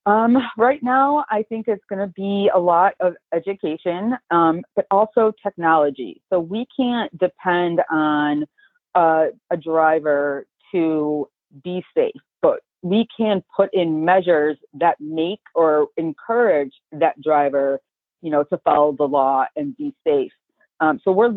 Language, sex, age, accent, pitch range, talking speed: English, female, 30-49, American, 155-220 Hz, 145 wpm